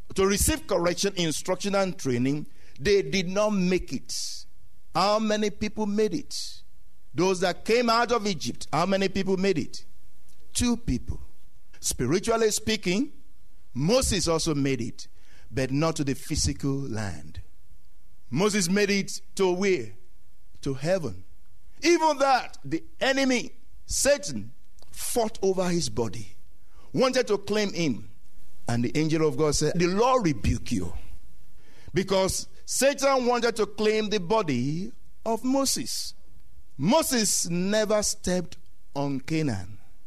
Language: English